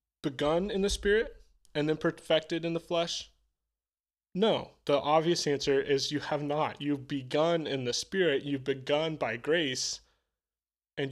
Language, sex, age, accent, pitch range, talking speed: English, male, 20-39, American, 130-160 Hz, 150 wpm